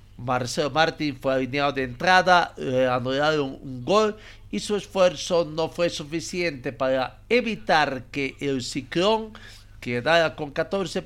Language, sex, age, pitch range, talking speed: Spanish, male, 50-69, 120-170 Hz, 135 wpm